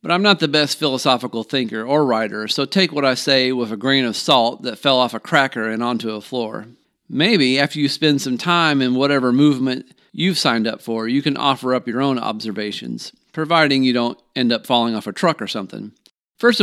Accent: American